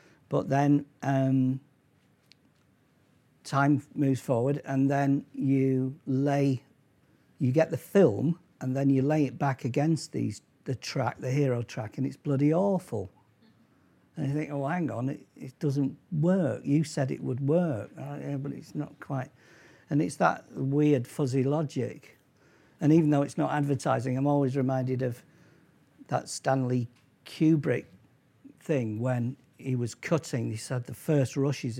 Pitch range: 125-150 Hz